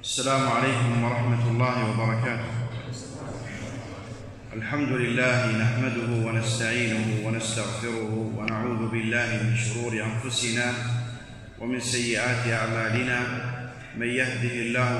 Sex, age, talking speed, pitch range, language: male, 30-49, 85 wpm, 120-130 Hz, Arabic